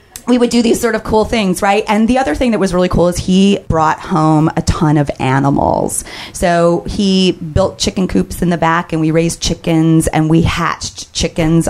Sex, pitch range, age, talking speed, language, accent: female, 150-190 Hz, 30-49, 210 wpm, English, American